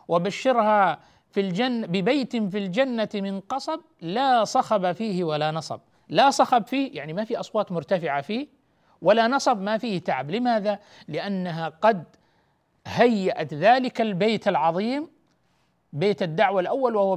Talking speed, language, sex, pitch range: 135 wpm, Arabic, male, 160-215 Hz